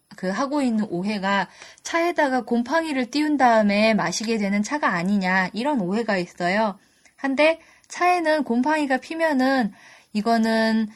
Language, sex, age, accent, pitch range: Korean, female, 10-29, native, 205-275 Hz